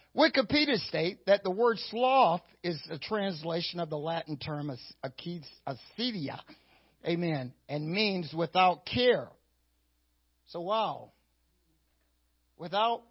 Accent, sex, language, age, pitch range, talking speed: American, male, English, 50-69, 145-200 Hz, 100 wpm